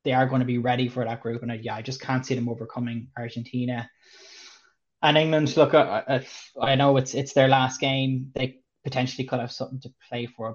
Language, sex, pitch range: English, male, 120-135 Hz